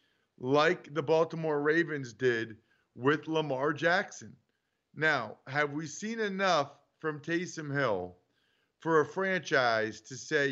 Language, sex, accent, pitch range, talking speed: English, male, American, 140-175 Hz, 120 wpm